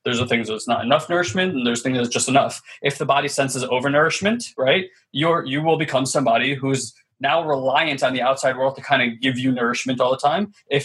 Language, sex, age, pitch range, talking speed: English, male, 20-39, 130-155 Hz, 230 wpm